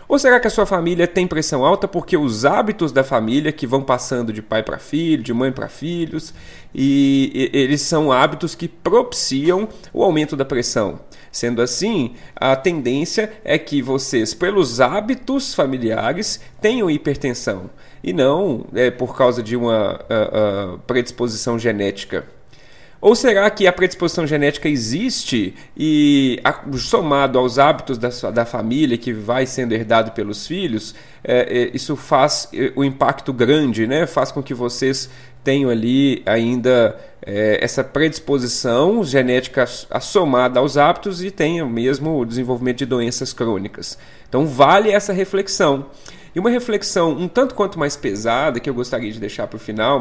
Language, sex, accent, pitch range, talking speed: Portuguese, male, Brazilian, 125-165 Hz, 150 wpm